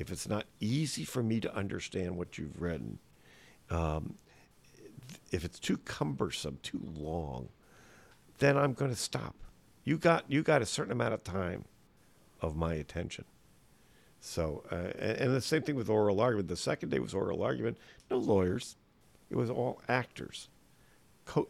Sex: male